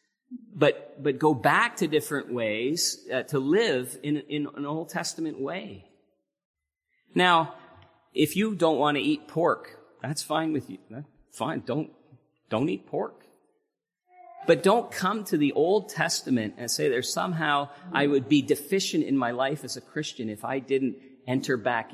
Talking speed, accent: 165 wpm, American